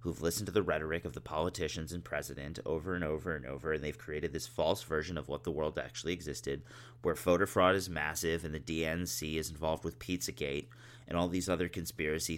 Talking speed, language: 215 wpm, English